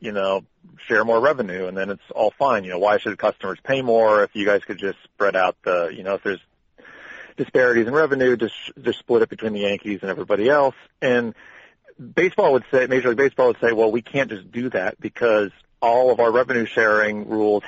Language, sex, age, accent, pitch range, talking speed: English, male, 40-59, American, 95-120 Hz, 215 wpm